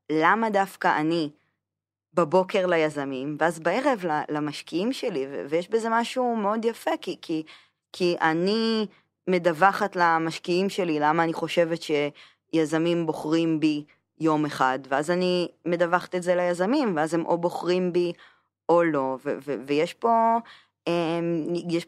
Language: Hebrew